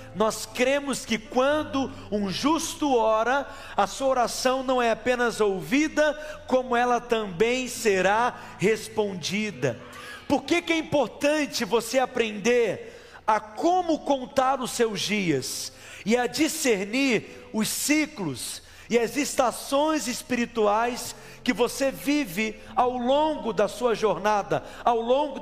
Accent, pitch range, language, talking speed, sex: Brazilian, 210-255 Hz, Portuguese, 120 wpm, male